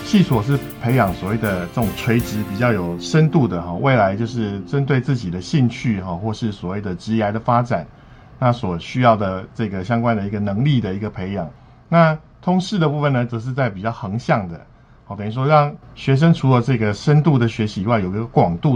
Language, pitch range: Chinese, 105-140 Hz